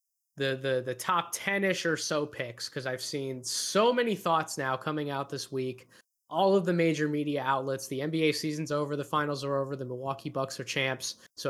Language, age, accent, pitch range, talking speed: English, 20-39, American, 135-165 Hz, 205 wpm